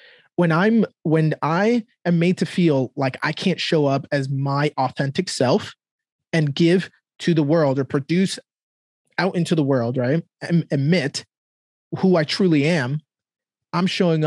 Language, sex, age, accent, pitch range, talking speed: English, male, 20-39, American, 140-175 Hz, 155 wpm